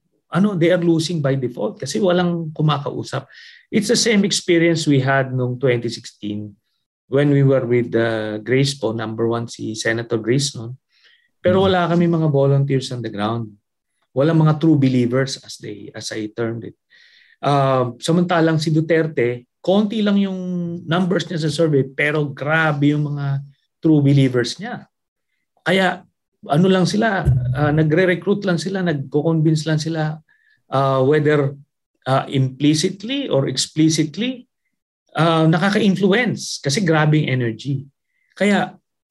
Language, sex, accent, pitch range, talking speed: English, male, Filipino, 130-170 Hz, 135 wpm